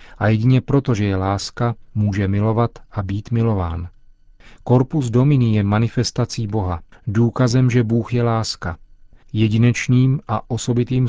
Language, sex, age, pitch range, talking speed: Czech, male, 40-59, 100-120 Hz, 130 wpm